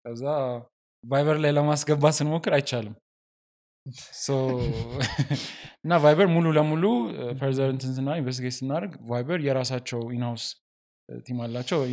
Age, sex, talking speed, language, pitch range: 20-39, male, 50 wpm, Amharic, 115-150 Hz